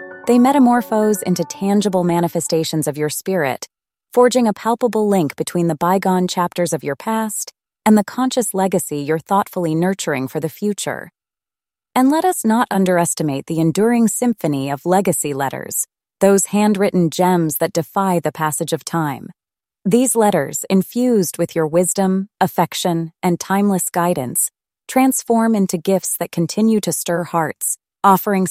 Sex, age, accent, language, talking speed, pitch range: female, 20-39, American, English, 145 wpm, 170-205 Hz